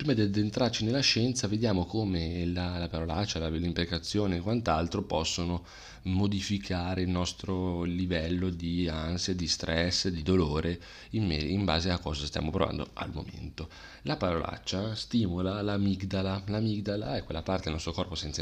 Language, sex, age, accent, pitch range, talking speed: Italian, male, 30-49, native, 85-105 Hz, 155 wpm